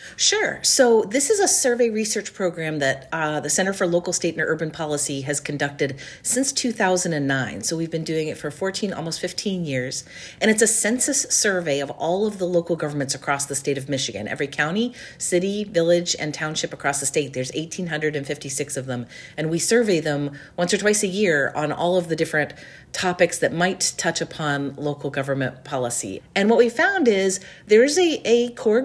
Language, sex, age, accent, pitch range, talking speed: English, female, 40-59, American, 140-195 Hz, 190 wpm